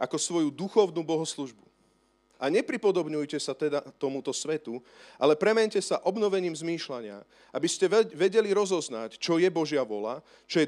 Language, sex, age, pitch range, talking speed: Slovak, male, 40-59, 145-200 Hz, 140 wpm